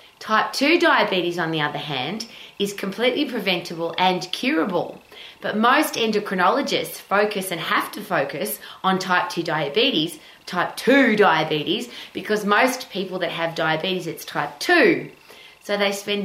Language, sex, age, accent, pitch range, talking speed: English, female, 20-39, Australian, 165-205 Hz, 145 wpm